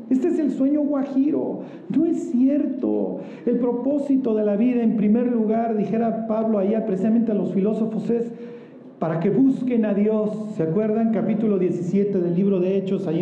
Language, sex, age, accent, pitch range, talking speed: Spanish, male, 40-59, Mexican, 180-230 Hz, 170 wpm